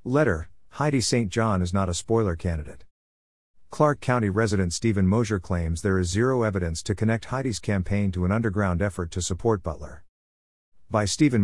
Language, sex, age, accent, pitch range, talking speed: English, male, 50-69, American, 90-110 Hz, 170 wpm